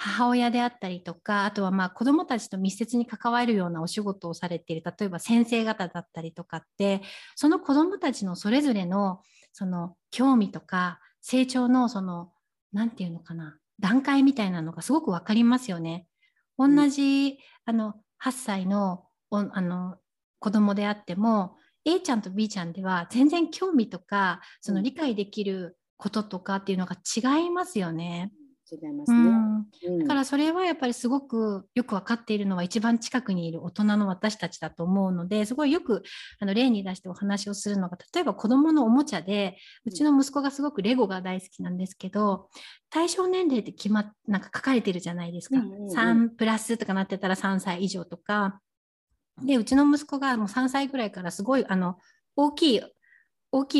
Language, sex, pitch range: Japanese, female, 185-255 Hz